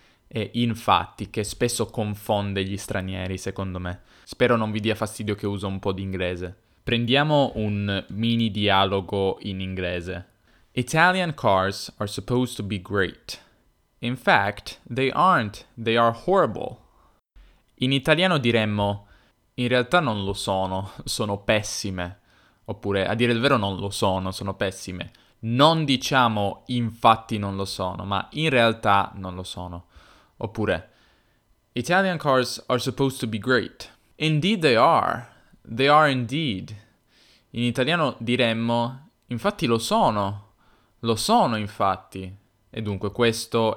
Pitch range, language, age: 100-120 Hz, Italian, 10-29